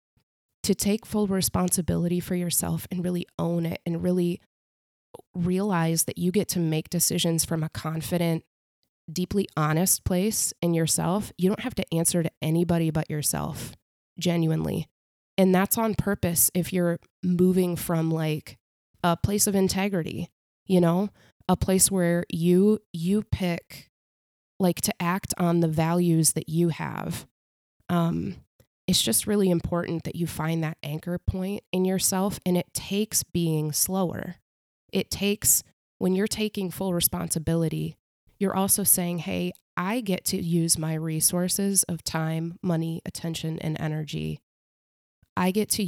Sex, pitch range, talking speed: female, 160-185 Hz, 145 wpm